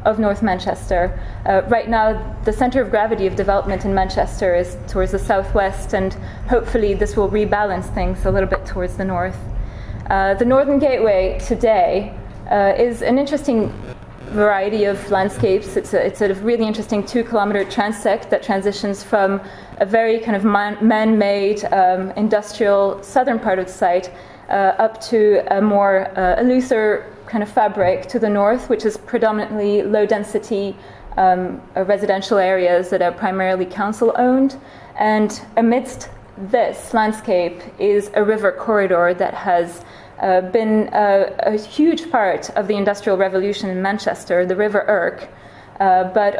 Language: English